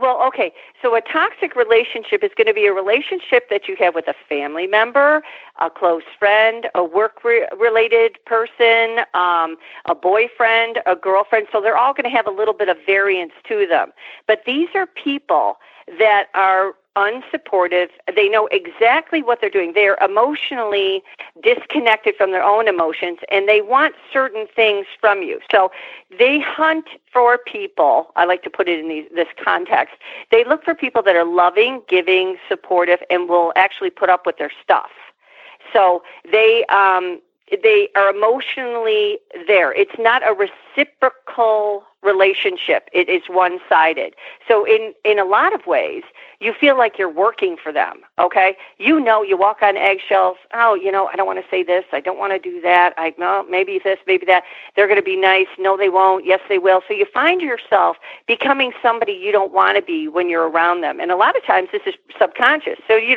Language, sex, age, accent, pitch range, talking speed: English, female, 50-69, American, 185-275 Hz, 185 wpm